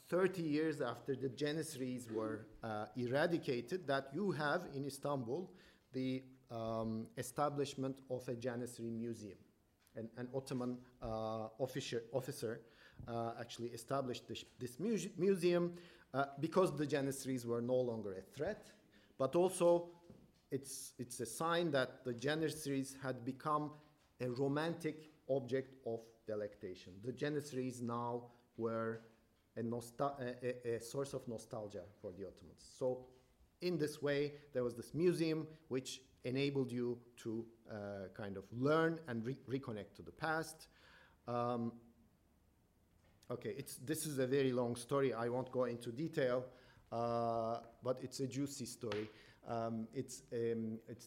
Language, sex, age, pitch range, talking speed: French, male, 50-69, 115-140 Hz, 135 wpm